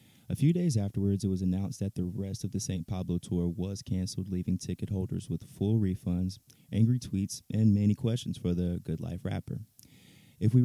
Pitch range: 90-100 Hz